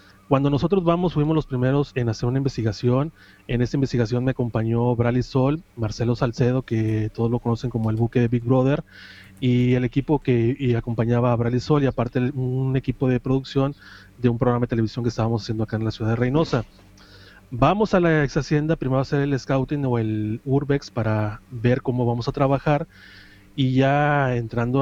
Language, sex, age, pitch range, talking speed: Spanish, male, 30-49, 115-135 Hz, 195 wpm